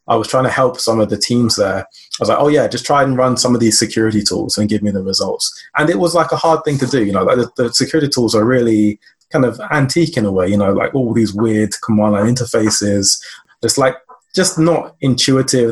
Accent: British